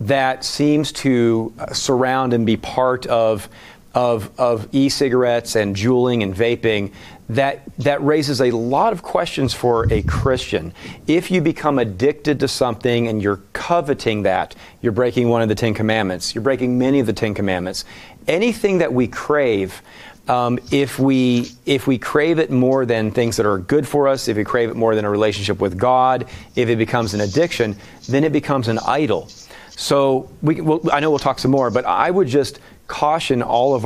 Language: English